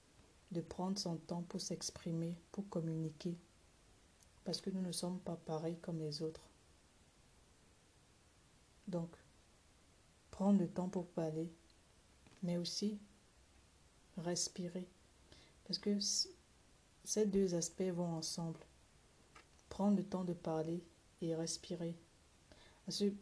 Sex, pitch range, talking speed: female, 160-185 Hz, 110 wpm